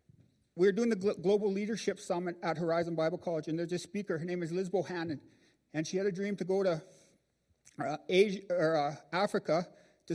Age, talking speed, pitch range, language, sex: 50-69, 200 wpm, 160-200 Hz, English, male